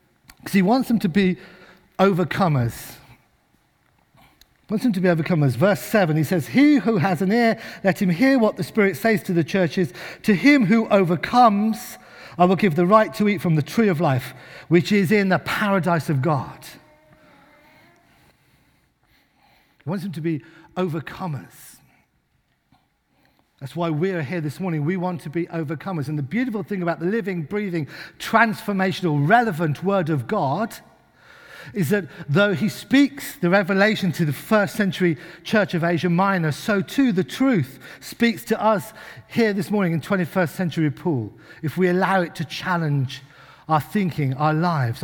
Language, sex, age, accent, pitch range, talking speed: English, male, 50-69, British, 160-205 Hz, 165 wpm